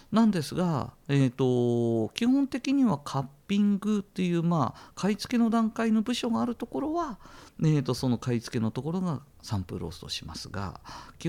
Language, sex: Japanese, male